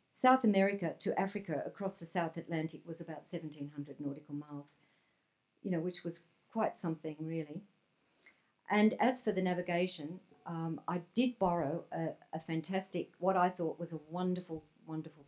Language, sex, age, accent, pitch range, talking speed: English, female, 50-69, Australian, 150-175 Hz, 155 wpm